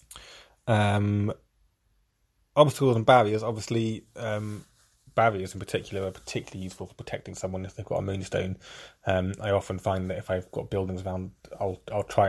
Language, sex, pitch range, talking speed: English, male, 95-110 Hz, 160 wpm